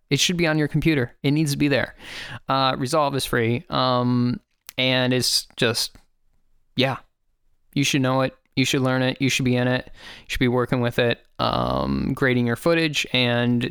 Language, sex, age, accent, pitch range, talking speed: English, male, 20-39, American, 125-150 Hz, 195 wpm